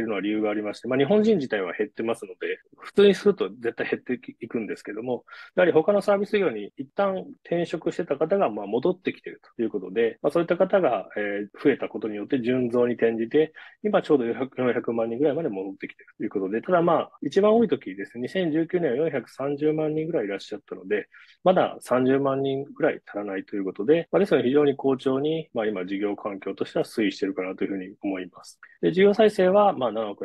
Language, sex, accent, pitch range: Japanese, male, native, 110-175 Hz